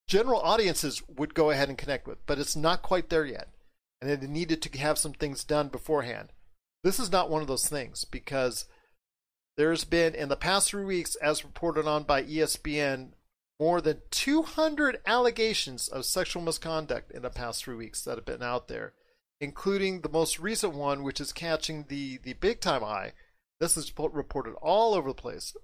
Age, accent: 40-59, American